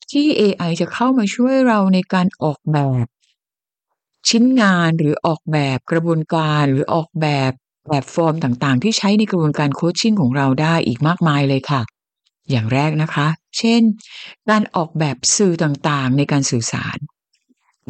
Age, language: 60-79, Thai